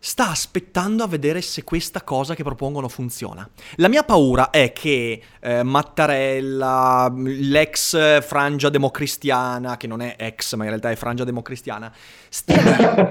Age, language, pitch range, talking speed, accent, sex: 30-49, Italian, 130-200 Hz, 140 wpm, native, male